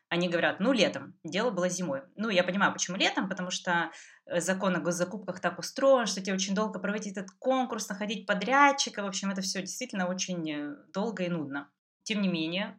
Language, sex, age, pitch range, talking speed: Russian, female, 20-39, 170-210 Hz, 190 wpm